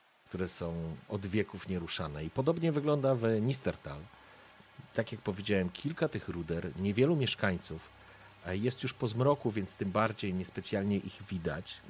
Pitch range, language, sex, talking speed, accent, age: 85-110 Hz, Polish, male, 140 wpm, native, 40-59